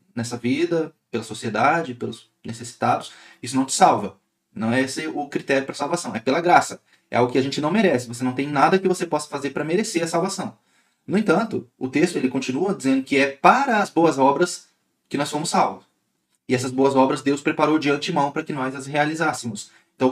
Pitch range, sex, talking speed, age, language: 130-175 Hz, male, 210 wpm, 20-39, Portuguese